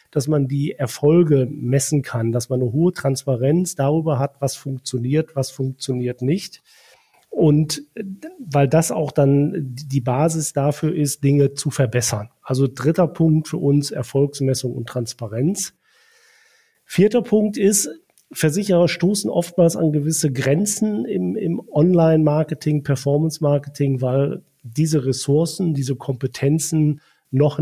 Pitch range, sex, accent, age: 135-160 Hz, male, German, 40-59